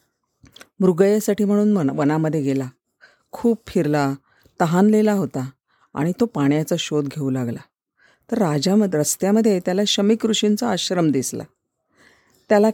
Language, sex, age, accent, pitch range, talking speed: Marathi, female, 40-59, native, 150-215 Hz, 115 wpm